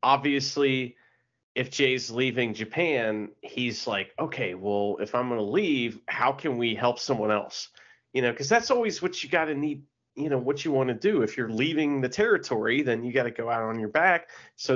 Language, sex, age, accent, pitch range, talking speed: English, male, 30-49, American, 110-135 Hz, 210 wpm